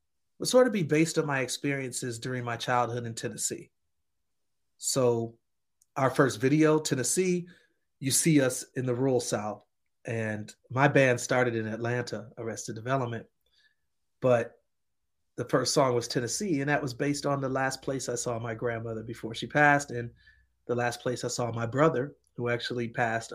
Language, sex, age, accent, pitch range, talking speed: English, male, 30-49, American, 115-145 Hz, 165 wpm